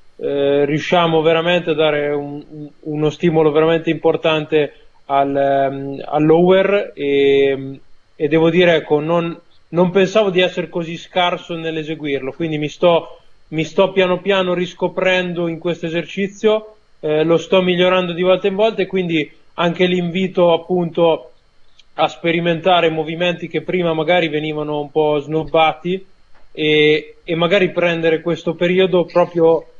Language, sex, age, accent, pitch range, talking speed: Italian, male, 20-39, native, 150-175 Hz, 135 wpm